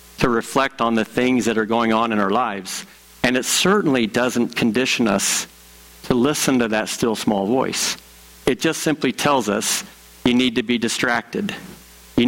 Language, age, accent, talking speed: English, 50-69, American, 175 wpm